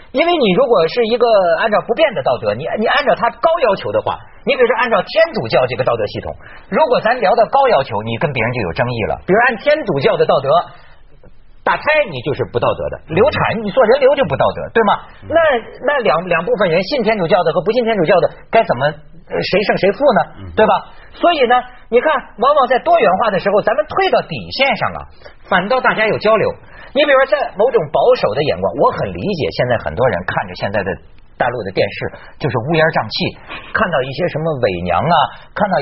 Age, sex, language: 50-69, male, Chinese